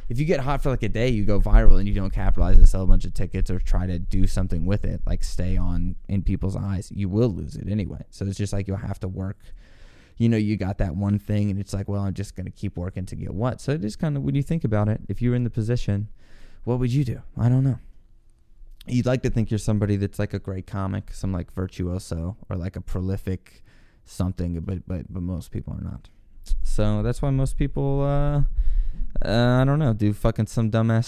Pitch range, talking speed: 90-110 Hz, 250 wpm